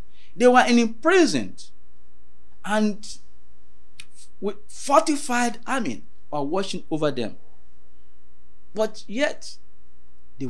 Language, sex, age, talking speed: English, male, 50-69, 90 wpm